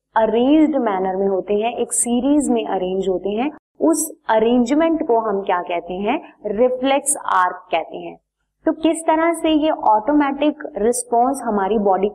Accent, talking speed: native, 150 wpm